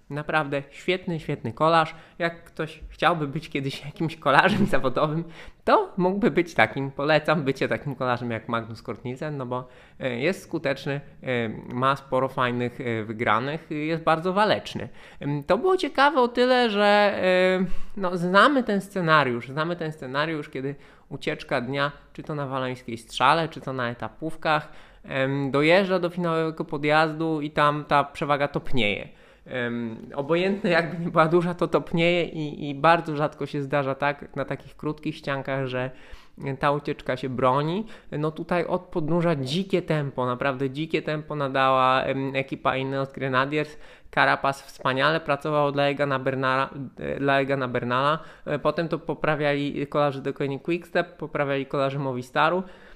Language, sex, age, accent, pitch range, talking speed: Polish, male, 20-39, native, 135-165 Hz, 140 wpm